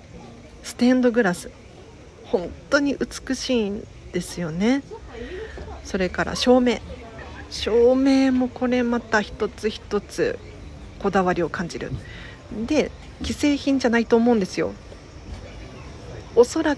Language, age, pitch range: Japanese, 40-59, 185-255 Hz